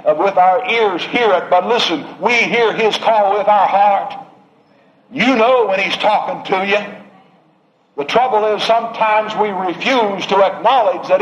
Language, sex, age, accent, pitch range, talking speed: English, male, 60-79, American, 175-220 Hz, 160 wpm